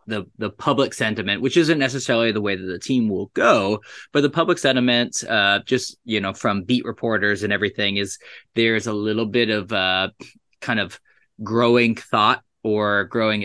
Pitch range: 105-125 Hz